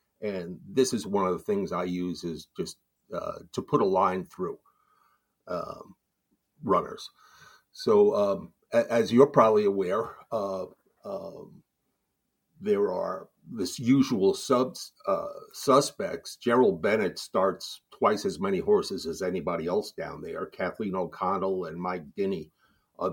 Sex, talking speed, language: male, 130 wpm, English